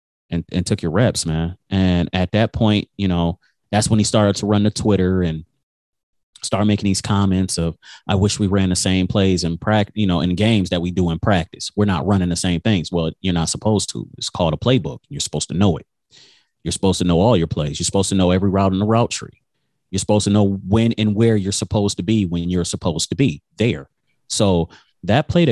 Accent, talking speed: American, 235 wpm